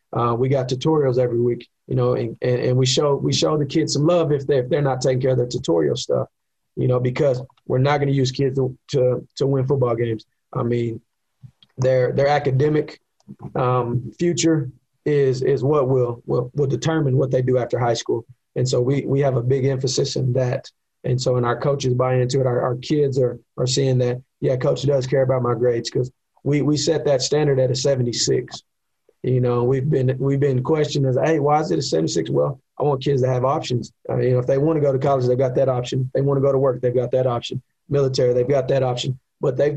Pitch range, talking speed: 125-140 Hz, 245 wpm